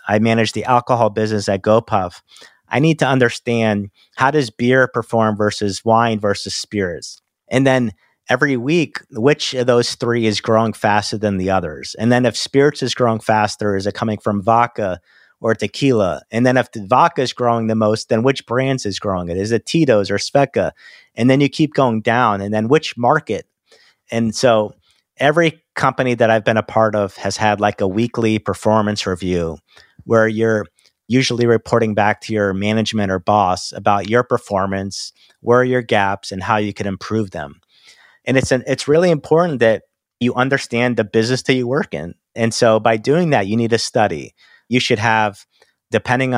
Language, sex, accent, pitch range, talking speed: English, male, American, 105-125 Hz, 190 wpm